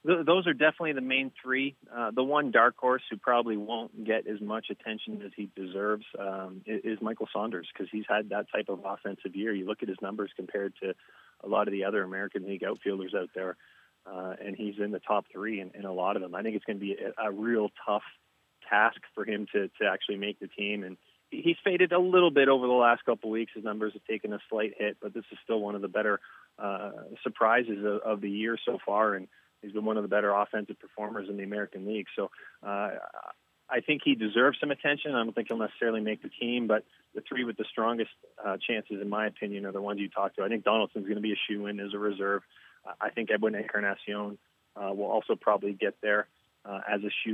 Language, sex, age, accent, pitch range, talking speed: English, male, 30-49, American, 100-115 Hz, 240 wpm